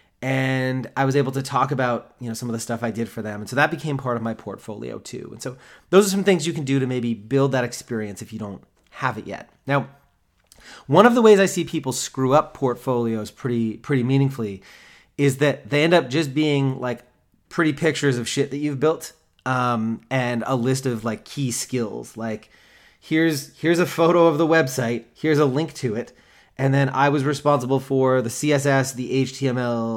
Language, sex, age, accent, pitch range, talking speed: English, male, 30-49, American, 120-150 Hz, 210 wpm